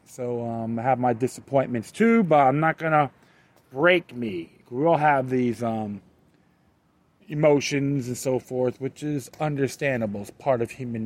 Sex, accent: male, American